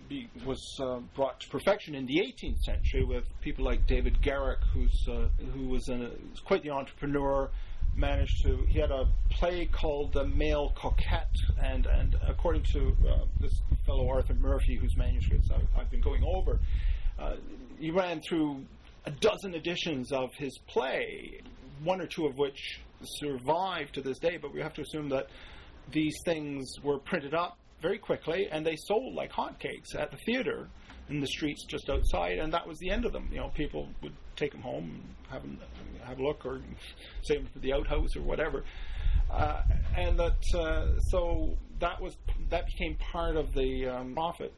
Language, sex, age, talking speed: English, male, 40-59, 180 wpm